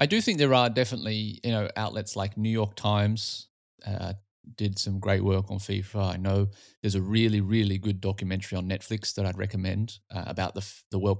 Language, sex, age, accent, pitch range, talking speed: English, male, 30-49, Australian, 95-110 Hz, 205 wpm